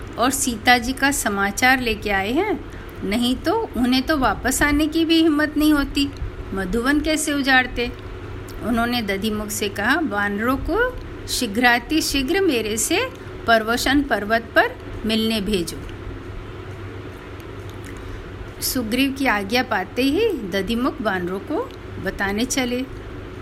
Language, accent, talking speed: Hindi, native, 120 wpm